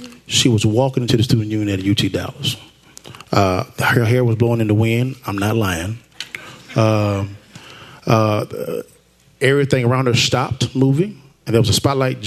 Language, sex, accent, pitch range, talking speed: English, male, American, 110-135 Hz, 160 wpm